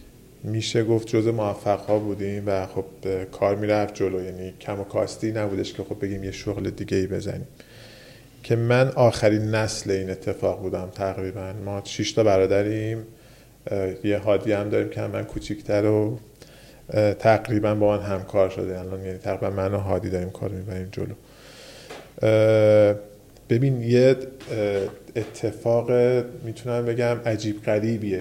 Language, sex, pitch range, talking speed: Persian, male, 100-115 Hz, 135 wpm